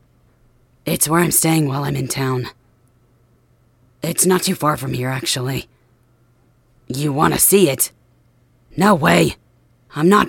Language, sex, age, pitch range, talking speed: English, female, 30-49, 125-175 Hz, 135 wpm